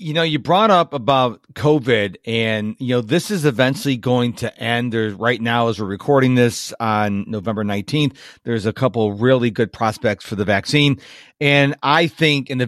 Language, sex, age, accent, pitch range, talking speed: English, male, 40-59, American, 120-175 Hz, 195 wpm